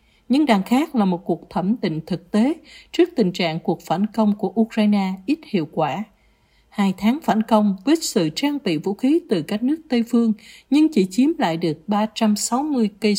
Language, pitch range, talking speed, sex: Vietnamese, 185-235 Hz, 195 wpm, female